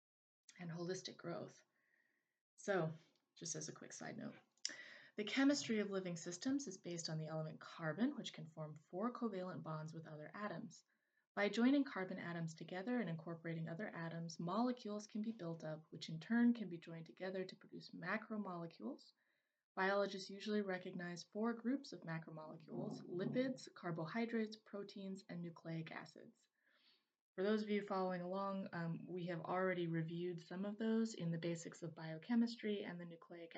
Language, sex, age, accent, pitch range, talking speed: English, female, 20-39, American, 170-210 Hz, 160 wpm